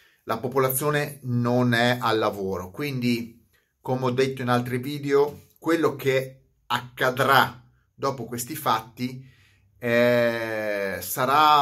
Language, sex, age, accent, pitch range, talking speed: Italian, male, 30-49, native, 120-150 Hz, 110 wpm